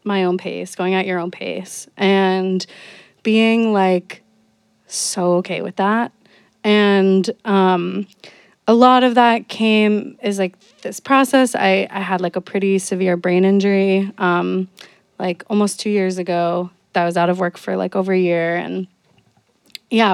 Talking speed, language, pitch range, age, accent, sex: 160 wpm, English, 185-210 Hz, 20-39, American, female